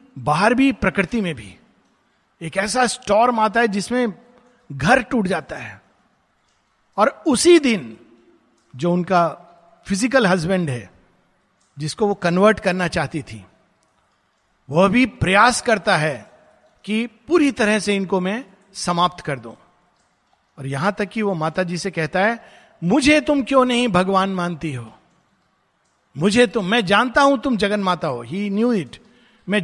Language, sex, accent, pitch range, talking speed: Hindi, male, native, 165-225 Hz, 145 wpm